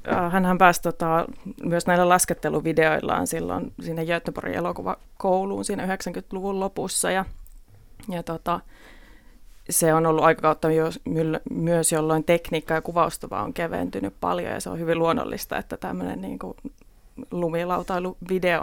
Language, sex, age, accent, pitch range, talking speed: Finnish, female, 30-49, native, 160-180 Hz, 125 wpm